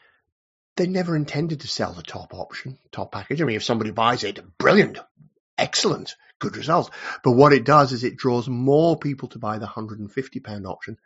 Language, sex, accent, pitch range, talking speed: English, male, British, 120-195 Hz, 205 wpm